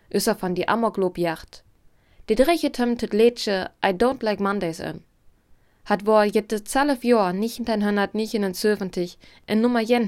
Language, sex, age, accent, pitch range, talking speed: German, female, 20-39, German, 180-235 Hz, 175 wpm